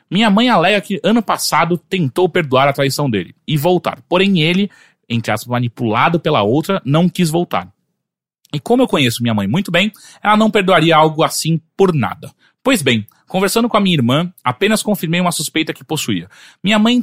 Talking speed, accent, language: 185 wpm, Brazilian, Portuguese